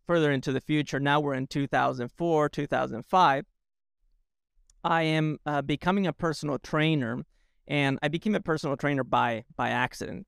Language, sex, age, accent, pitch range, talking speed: English, male, 30-49, American, 130-155 Hz, 145 wpm